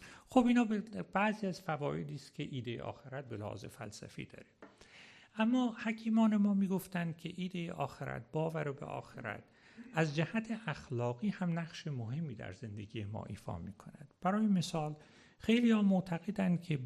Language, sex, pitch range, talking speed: Persian, male, 115-170 Hz, 140 wpm